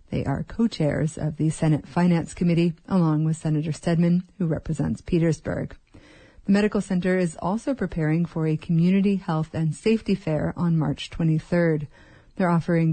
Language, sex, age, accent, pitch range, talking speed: English, female, 30-49, American, 155-180 Hz, 155 wpm